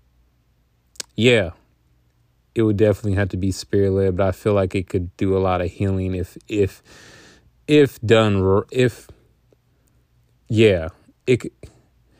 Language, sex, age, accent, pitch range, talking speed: English, male, 20-39, American, 90-105 Hz, 135 wpm